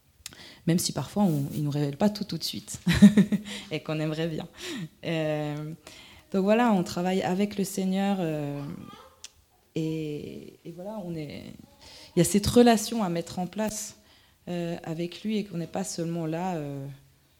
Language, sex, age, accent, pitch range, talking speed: French, female, 20-39, French, 155-200 Hz, 170 wpm